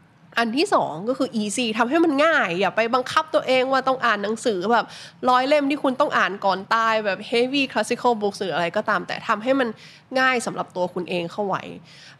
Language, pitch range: Thai, 180-240 Hz